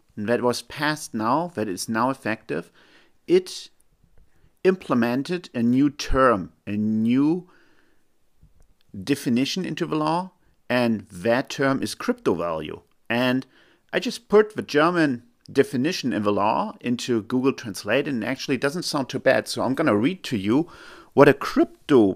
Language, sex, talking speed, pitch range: English, male, 150 wpm, 105-145 Hz